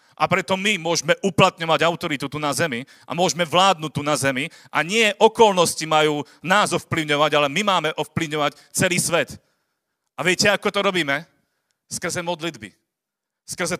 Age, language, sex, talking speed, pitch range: 40-59, Slovak, male, 150 wpm, 160-190 Hz